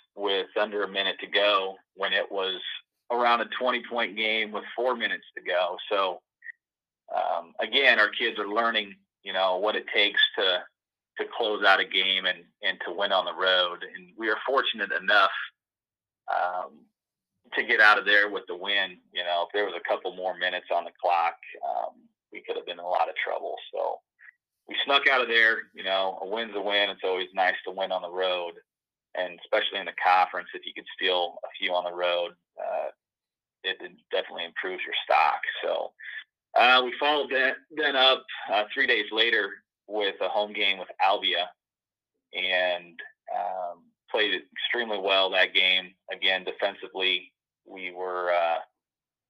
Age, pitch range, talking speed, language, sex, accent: 30-49, 90-120 Hz, 180 wpm, English, male, American